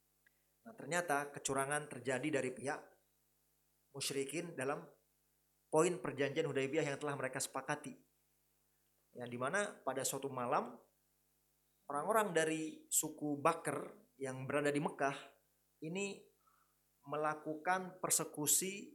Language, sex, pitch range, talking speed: Indonesian, male, 145-195 Hz, 100 wpm